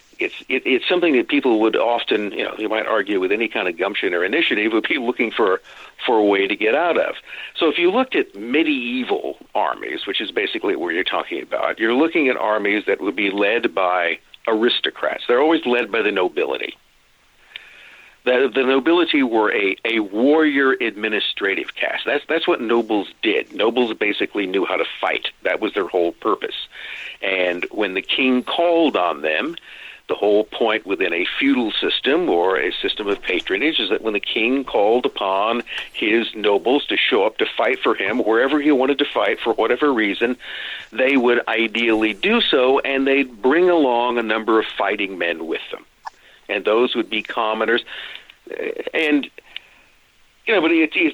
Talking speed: 180 wpm